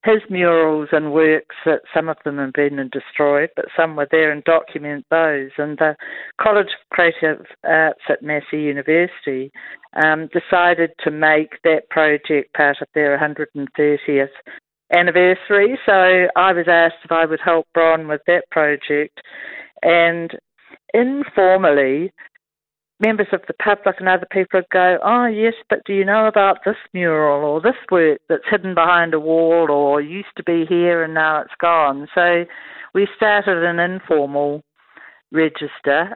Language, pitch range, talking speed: English, 150-180 Hz, 155 wpm